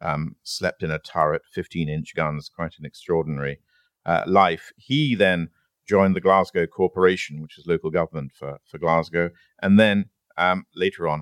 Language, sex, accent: English, male, British